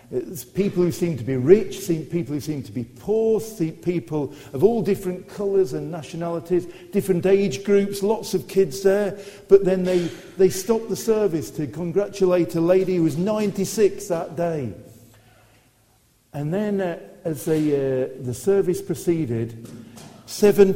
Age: 50-69